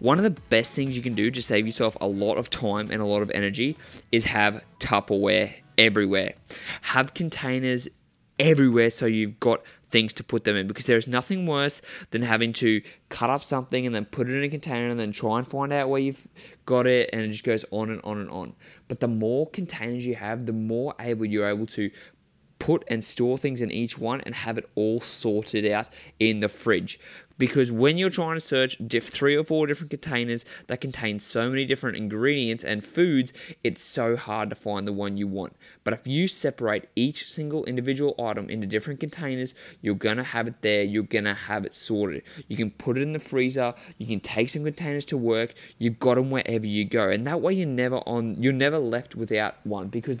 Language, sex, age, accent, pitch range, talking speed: English, male, 20-39, Australian, 110-135 Hz, 220 wpm